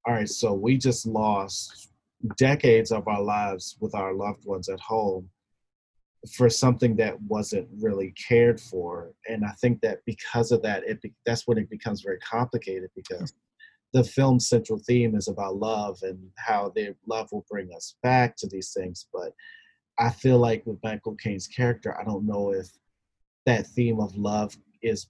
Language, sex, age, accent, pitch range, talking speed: English, male, 30-49, American, 105-125 Hz, 175 wpm